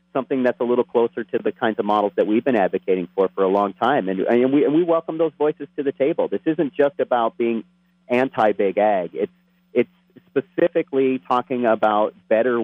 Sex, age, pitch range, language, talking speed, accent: male, 40-59, 100-135 Hz, English, 205 wpm, American